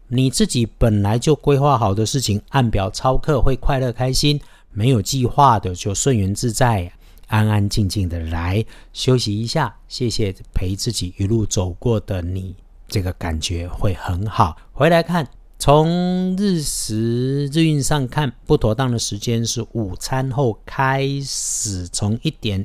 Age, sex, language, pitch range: 50-69, male, Chinese, 100-135 Hz